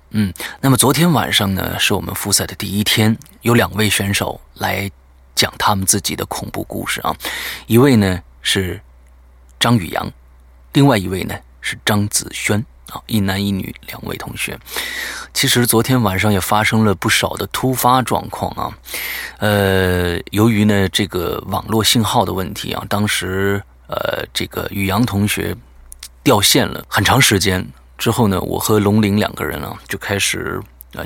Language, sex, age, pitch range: Chinese, male, 30-49, 95-110 Hz